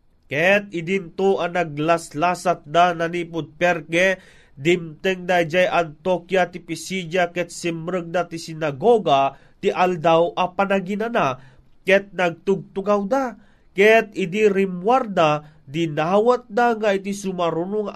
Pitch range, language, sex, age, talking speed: 165-215 Hz, Filipino, male, 30-49, 115 wpm